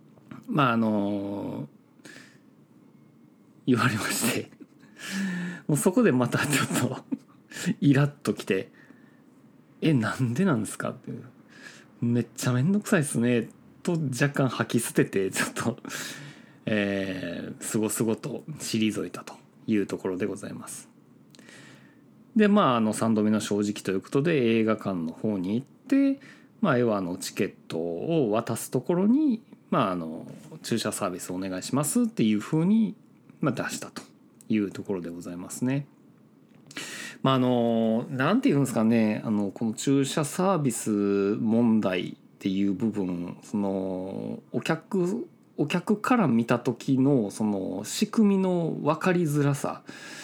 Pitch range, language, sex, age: 105-160 Hz, Japanese, male, 40-59